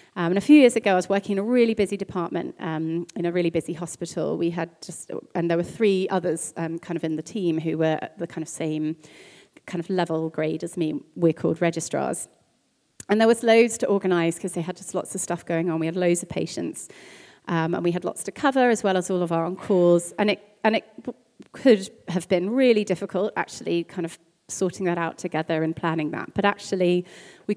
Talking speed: 225 wpm